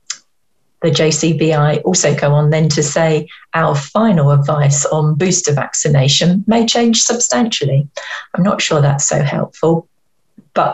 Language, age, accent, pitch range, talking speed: English, 40-59, British, 150-200 Hz, 135 wpm